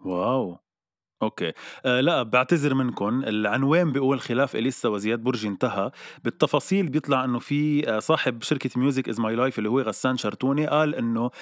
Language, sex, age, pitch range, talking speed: Arabic, male, 20-39, 105-140 Hz, 150 wpm